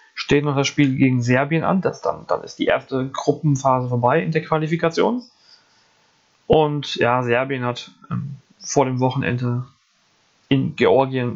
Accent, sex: German, male